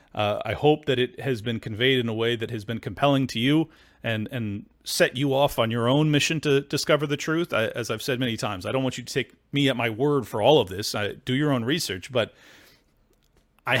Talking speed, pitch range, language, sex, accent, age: 240 wpm, 120-145 Hz, English, male, American, 40-59